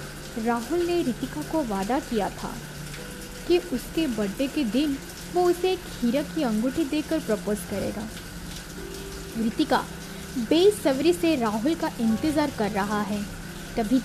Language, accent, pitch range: Hindi, native, 210-315 Hz